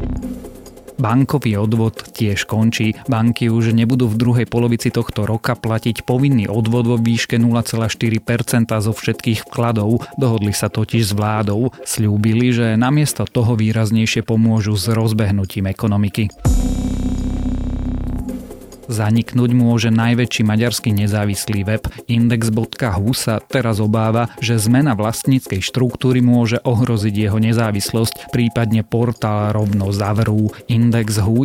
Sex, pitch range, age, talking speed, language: male, 105-120 Hz, 30-49, 110 wpm, Slovak